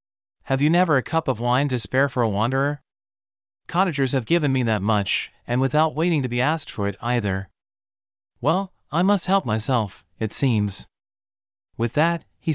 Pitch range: 115-155 Hz